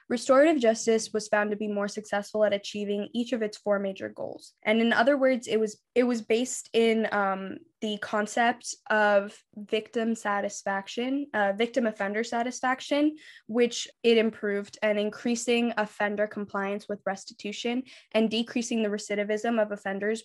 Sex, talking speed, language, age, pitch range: female, 150 wpm, English, 10-29, 205-225 Hz